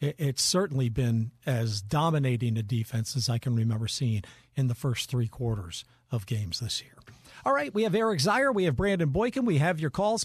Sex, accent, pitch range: male, American, 125-190 Hz